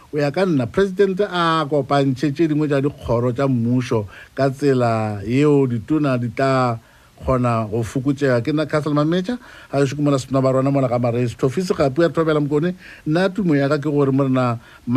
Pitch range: 130-165 Hz